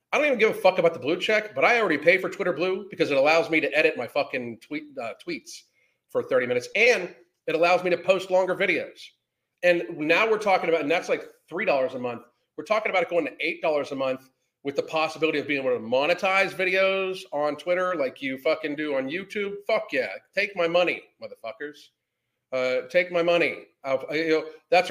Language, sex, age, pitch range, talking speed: English, male, 40-59, 155-200 Hz, 205 wpm